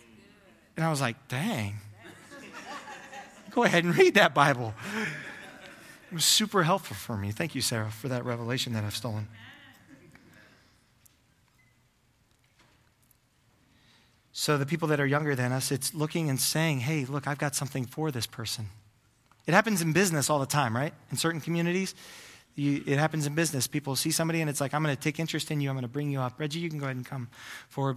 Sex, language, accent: male, English, American